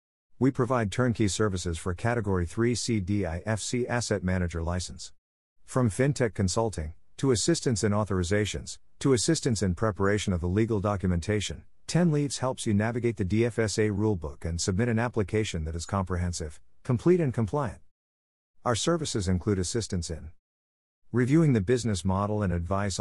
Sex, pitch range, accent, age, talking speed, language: male, 85-115 Hz, American, 50-69, 145 wpm, English